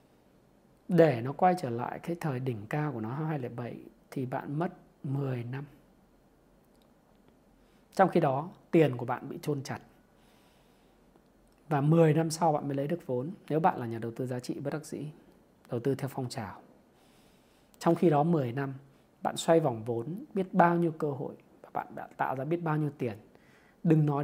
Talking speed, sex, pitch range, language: 190 wpm, male, 125-175 Hz, Vietnamese